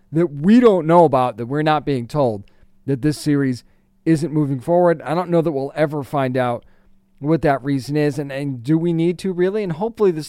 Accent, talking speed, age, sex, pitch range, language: American, 220 wpm, 40-59, male, 130-170 Hz, English